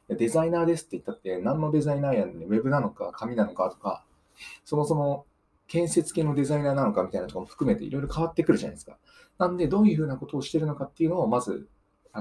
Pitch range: 130-205 Hz